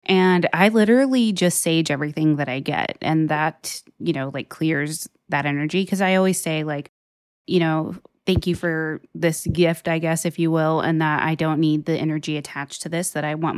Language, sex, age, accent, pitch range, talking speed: English, female, 20-39, American, 155-180 Hz, 210 wpm